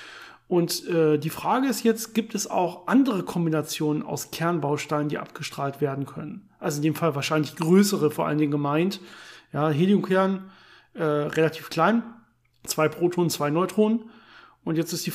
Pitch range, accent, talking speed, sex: 150-185 Hz, German, 160 wpm, male